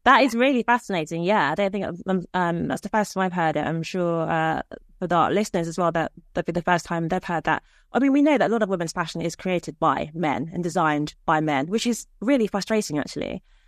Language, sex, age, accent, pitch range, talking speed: English, female, 20-39, British, 175-220 Hz, 240 wpm